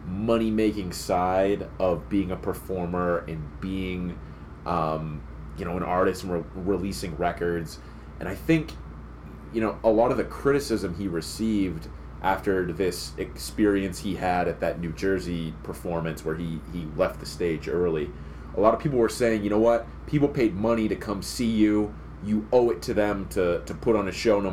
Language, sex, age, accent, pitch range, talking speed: English, male, 30-49, American, 75-110 Hz, 185 wpm